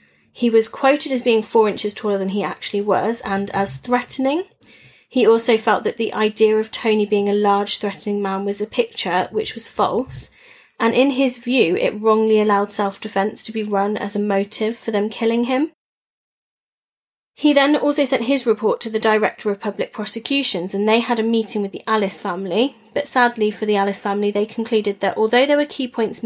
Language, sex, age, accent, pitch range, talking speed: English, female, 20-39, British, 200-240 Hz, 200 wpm